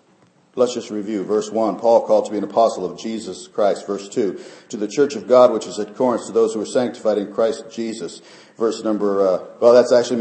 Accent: American